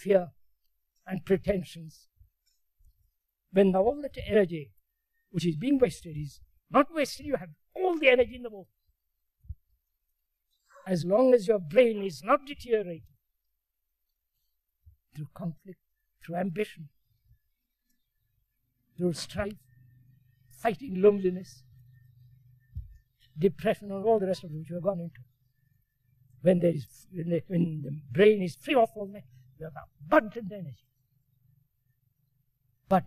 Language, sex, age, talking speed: English, male, 60-79, 115 wpm